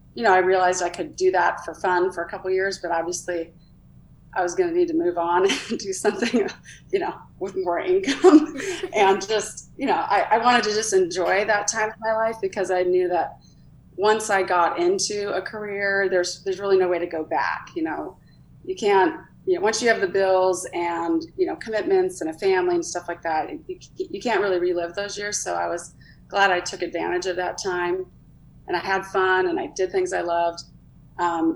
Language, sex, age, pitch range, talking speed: English, female, 30-49, 180-215 Hz, 220 wpm